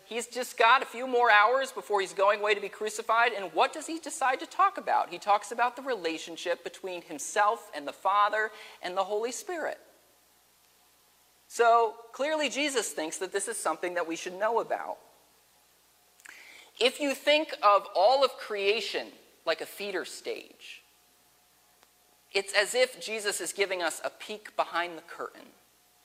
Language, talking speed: English, 165 wpm